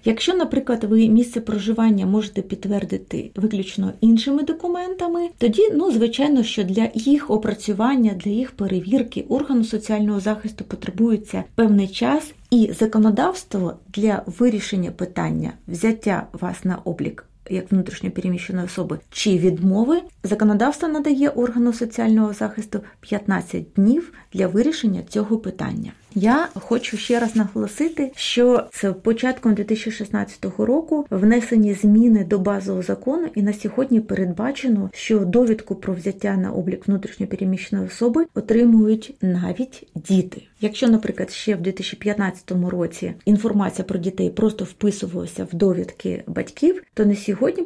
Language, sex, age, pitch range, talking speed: Ukrainian, female, 30-49, 195-240 Hz, 125 wpm